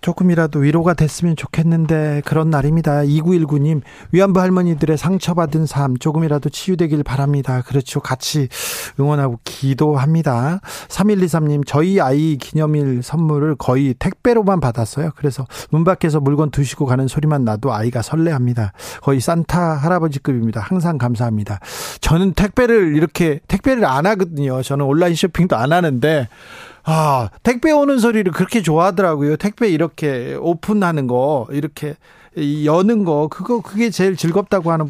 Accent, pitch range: native, 140-175 Hz